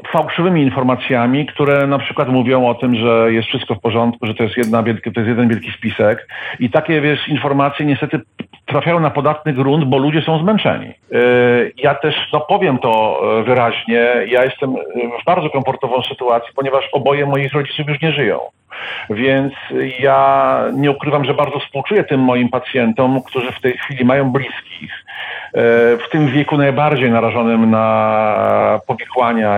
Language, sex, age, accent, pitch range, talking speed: Polish, male, 50-69, native, 120-145 Hz, 160 wpm